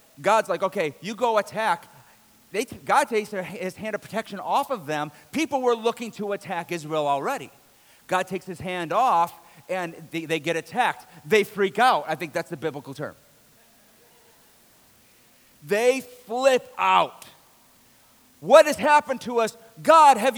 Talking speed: 150 wpm